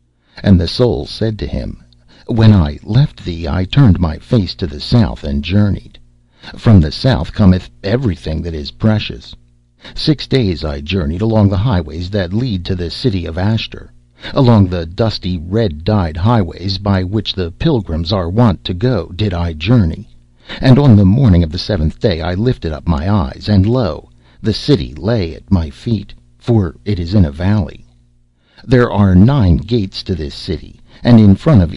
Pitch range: 80-110 Hz